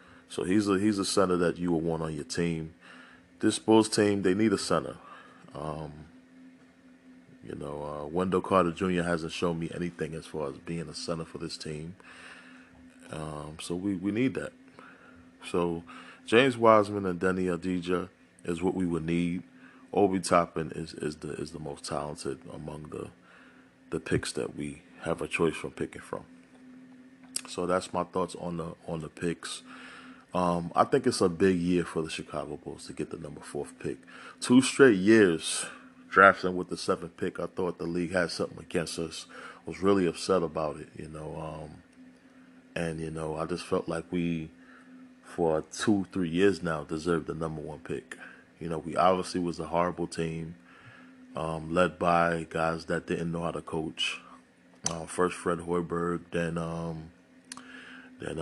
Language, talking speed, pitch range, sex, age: English, 175 wpm, 80-95 Hz, male, 20-39